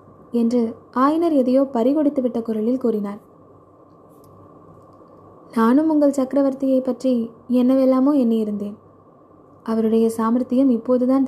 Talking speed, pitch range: 75 wpm, 225-270 Hz